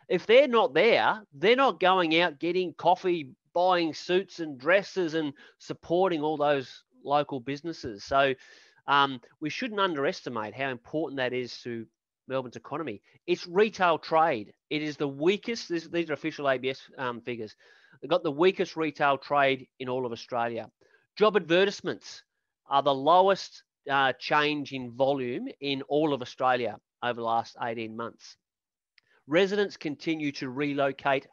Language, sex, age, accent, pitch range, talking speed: English, male, 30-49, Australian, 125-160 Hz, 150 wpm